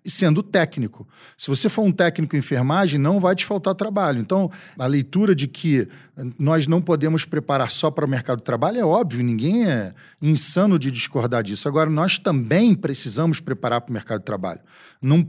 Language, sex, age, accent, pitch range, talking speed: Portuguese, male, 40-59, Brazilian, 135-190 Hz, 190 wpm